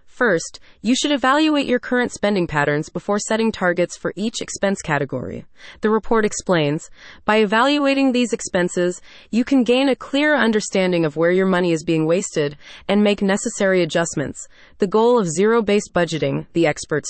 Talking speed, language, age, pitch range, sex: 160 wpm, English, 20-39, 170-225 Hz, female